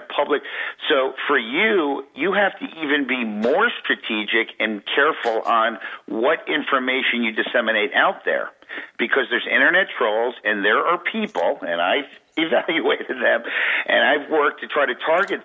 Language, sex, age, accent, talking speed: English, male, 50-69, American, 150 wpm